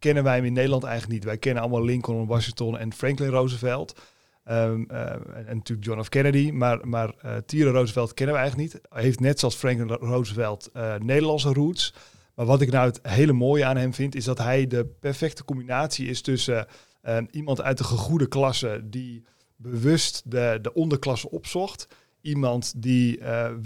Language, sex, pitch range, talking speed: Dutch, male, 120-135 Hz, 185 wpm